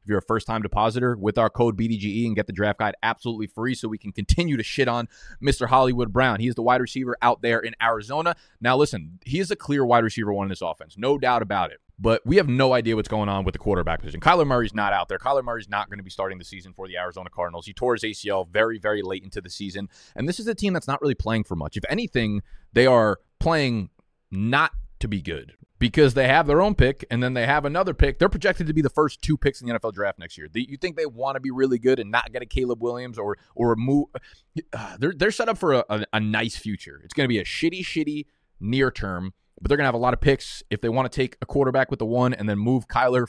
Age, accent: 20-39, American